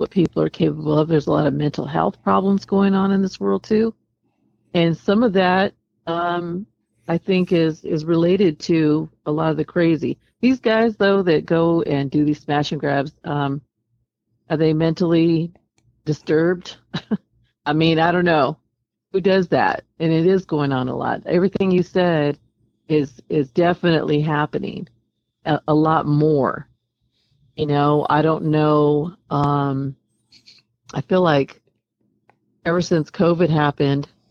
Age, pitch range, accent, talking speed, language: 50-69, 140-170 Hz, American, 155 wpm, English